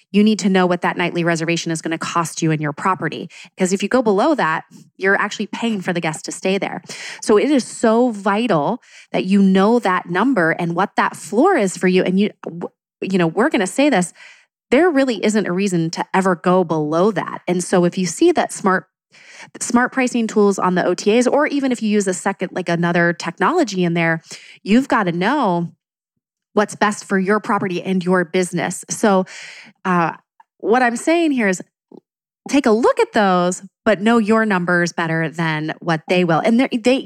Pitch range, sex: 175-245 Hz, female